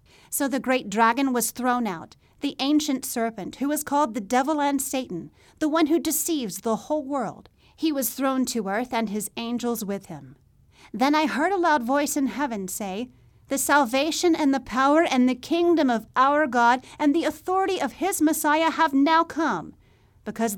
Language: English